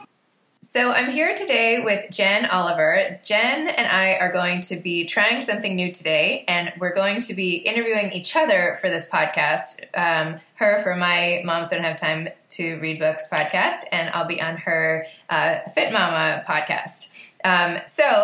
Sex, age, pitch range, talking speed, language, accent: female, 20-39, 170-220 Hz, 170 wpm, English, American